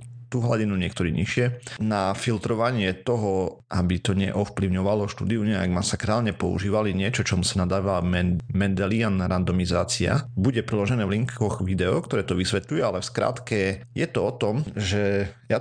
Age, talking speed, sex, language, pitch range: 40-59, 140 wpm, male, Slovak, 95-120 Hz